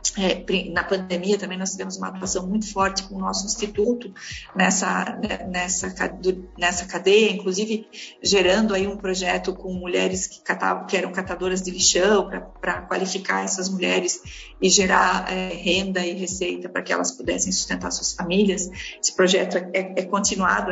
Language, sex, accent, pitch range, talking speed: Portuguese, female, Brazilian, 180-200 Hz, 155 wpm